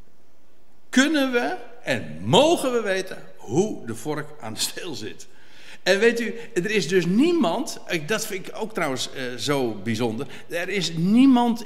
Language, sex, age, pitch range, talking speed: Dutch, male, 60-79, 145-220 Hz, 160 wpm